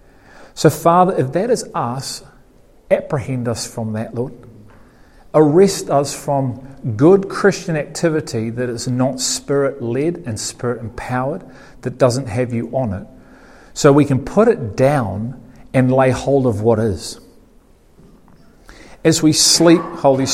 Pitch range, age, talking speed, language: 120-145 Hz, 40-59, 135 wpm, English